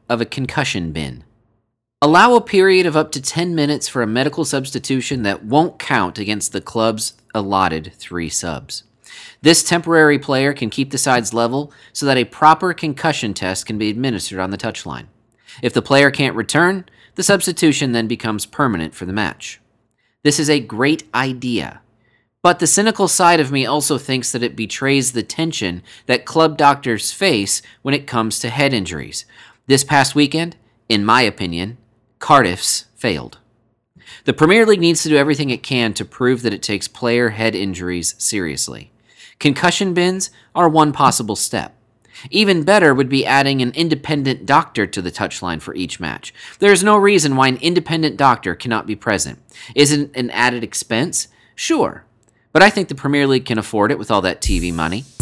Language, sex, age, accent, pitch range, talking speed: English, male, 30-49, American, 110-150 Hz, 175 wpm